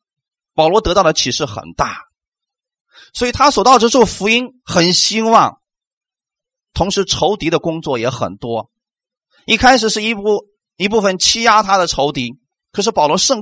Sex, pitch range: male, 190-285 Hz